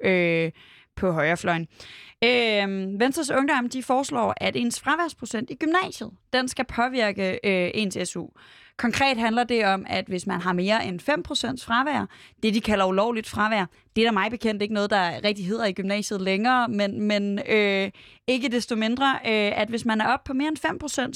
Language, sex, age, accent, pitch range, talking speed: Danish, female, 20-39, native, 190-235 Hz, 185 wpm